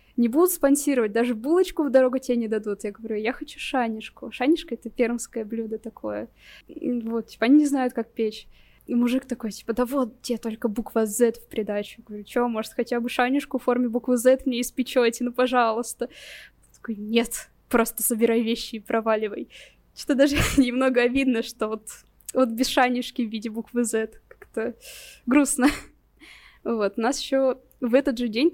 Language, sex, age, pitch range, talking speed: Russian, female, 20-39, 230-265 Hz, 175 wpm